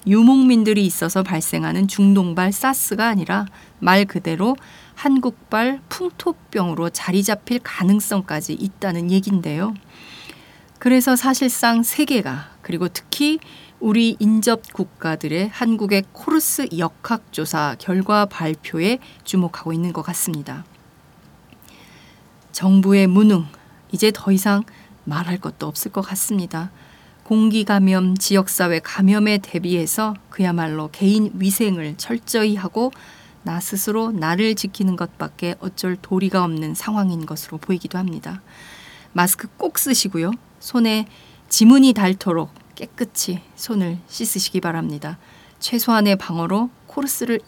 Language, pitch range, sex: Korean, 175-220 Hz, female